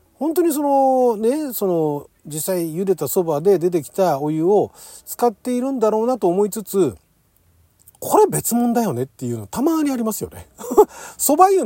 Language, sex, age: Japanese, male, 40-59